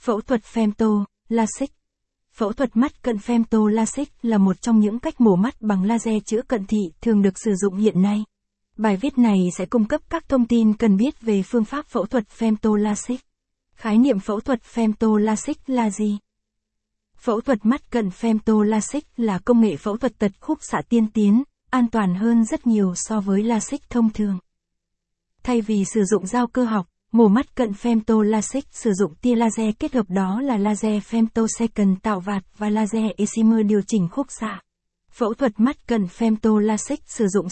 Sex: female